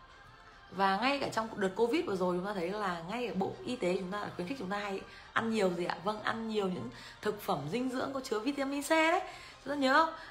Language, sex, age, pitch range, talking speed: Vietnamese, female, 20-39, 150-205 Hz, 270 wpm